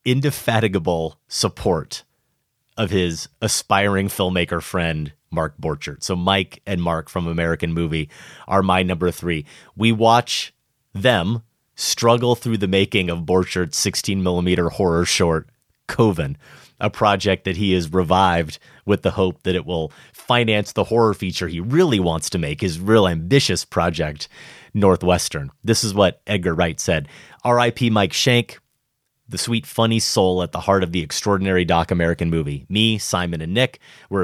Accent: American